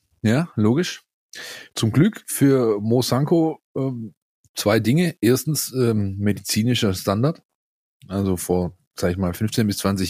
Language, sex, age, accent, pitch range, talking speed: German, male, 30-49, German, 95-120 Hz, 130 wpm